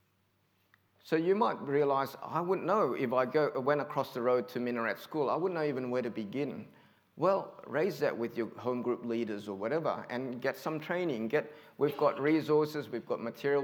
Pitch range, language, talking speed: 110-145 Hz, English, 200 wpm